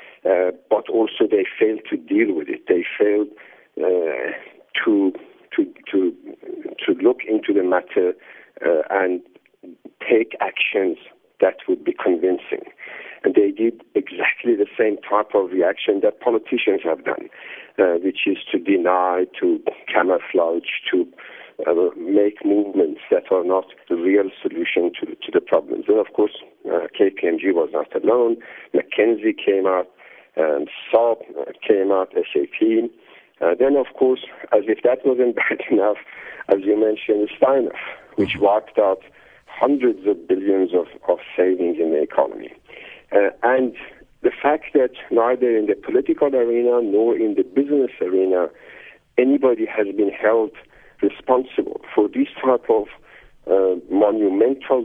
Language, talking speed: English, 140 wpm